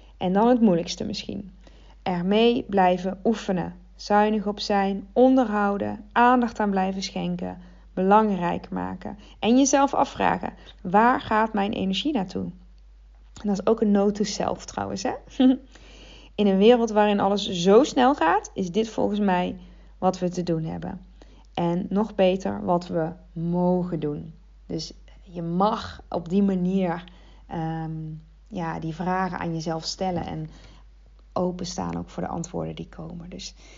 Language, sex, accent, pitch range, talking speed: Dutch, female, Dutch, 175-215 Hz, 140 wpm